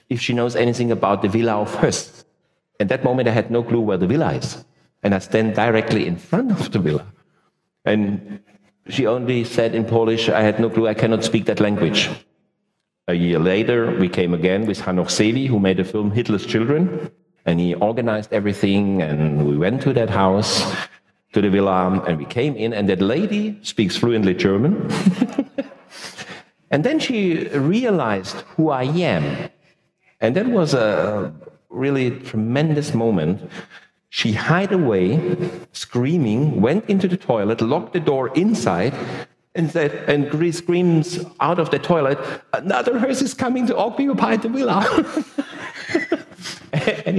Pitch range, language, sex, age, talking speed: 105-175 Hz, Greek, male, 50-69, 160 wpm